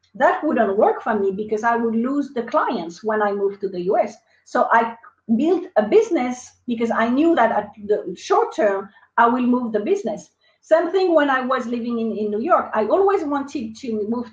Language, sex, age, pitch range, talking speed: English, female, 40-59, 225-325 Hz, 210 wpm